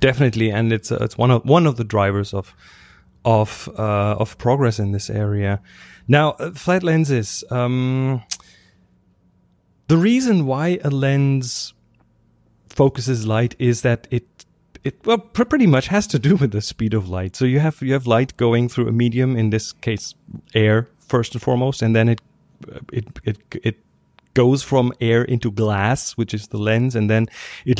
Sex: male